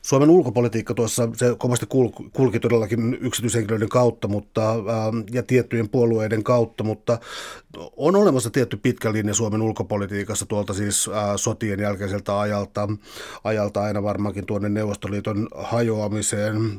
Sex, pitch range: male, 105-120 Hz